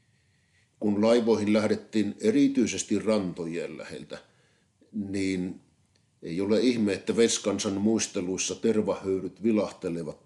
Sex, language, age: male, Finnish, 50-69